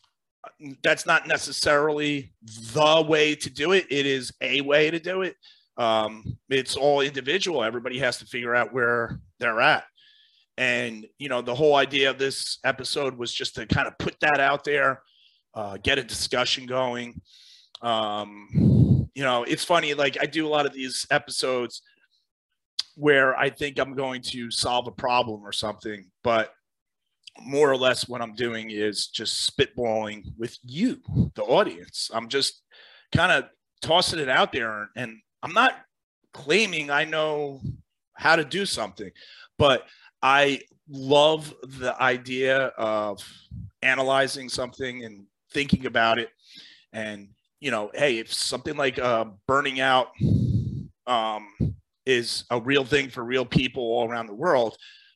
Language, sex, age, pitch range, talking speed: English, male, 30-49, 115-145 Hz, 150 wpm